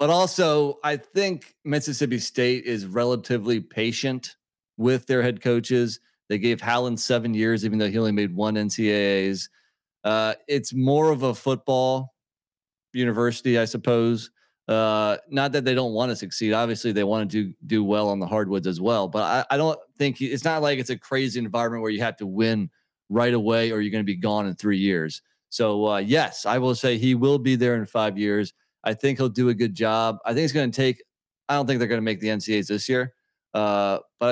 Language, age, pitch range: English, 30-49, 110-130 Hz